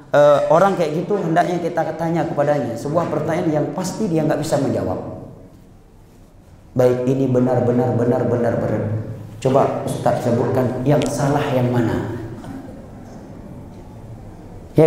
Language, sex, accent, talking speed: Indonesian, male, native, 115 wpm